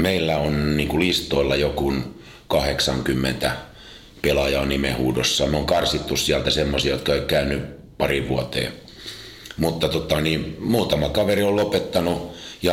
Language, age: Finnish, 50-69